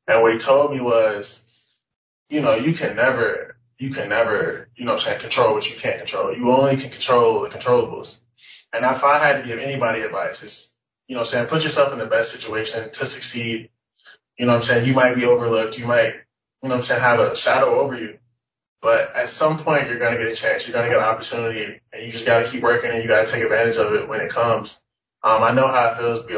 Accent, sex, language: American, male, English